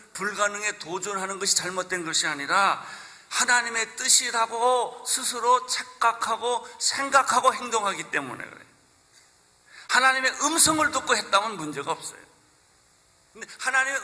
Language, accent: Korean, native